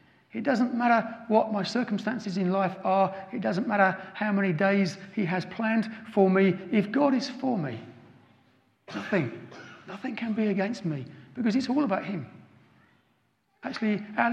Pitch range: 170-215 Hz